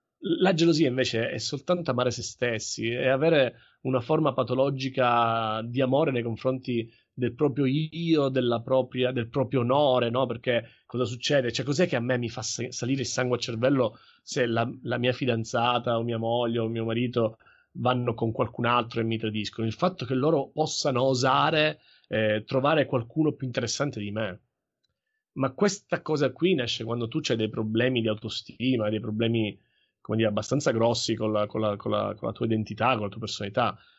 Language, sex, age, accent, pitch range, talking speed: Italian, male, 30-49, native, 115-135 Hz, 175 wpm